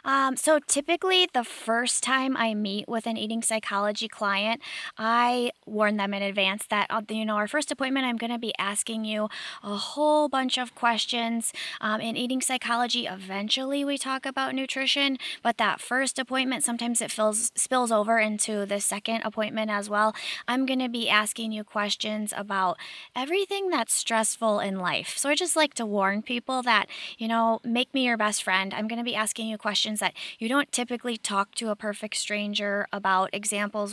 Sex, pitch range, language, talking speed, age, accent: female, 200-245 Hz, English, 185 wpm, 20-39, American